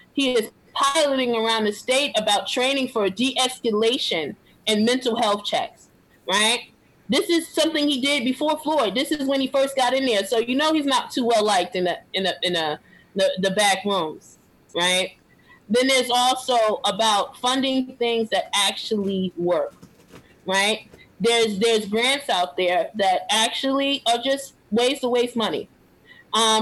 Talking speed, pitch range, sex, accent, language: 160 wpm, 205-260 Hz, female, American, English